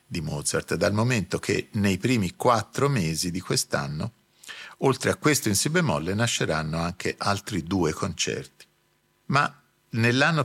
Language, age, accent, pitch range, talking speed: Italian, 50-69, native, 95-140 Hz, 140 wpm